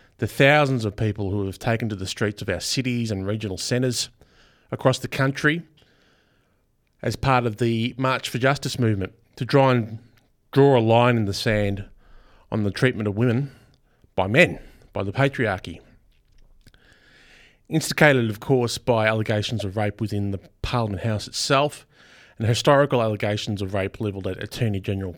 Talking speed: 160 wpm